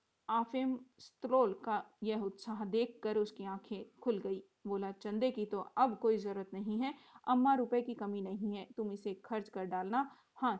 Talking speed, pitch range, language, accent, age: 175 wpm, 200-240 Hz, Hindi, native, 40-59